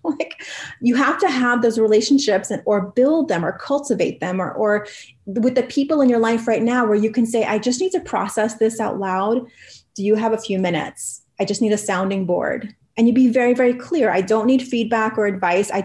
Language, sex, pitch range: English, female, 195-250 Hz